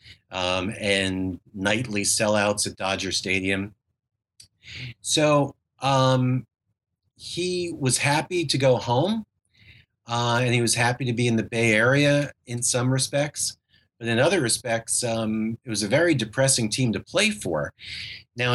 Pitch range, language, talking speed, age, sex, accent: 105-125 Hz, English, 140 wpm, 40-59, male, American